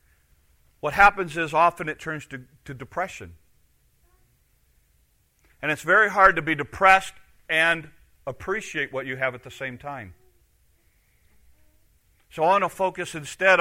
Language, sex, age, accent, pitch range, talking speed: English, male, 40-59, American, 90-140 Hz, 135 wpm